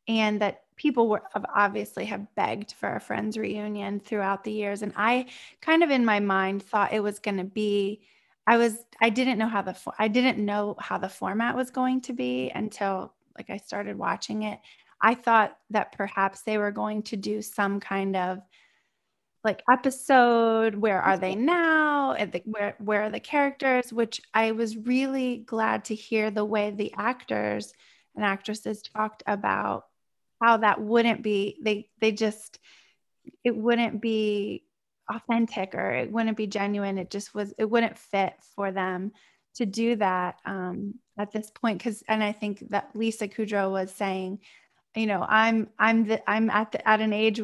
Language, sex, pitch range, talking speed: English, female, 205-235 Hz, 175 wpm